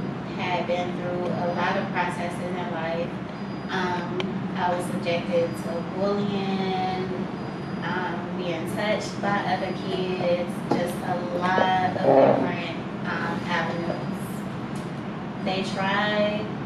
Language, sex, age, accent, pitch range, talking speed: English, female, 20-39, American, 175-190 Hz, 110 wpm